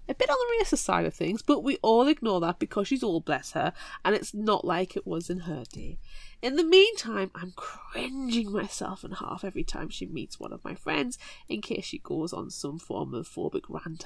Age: 20-39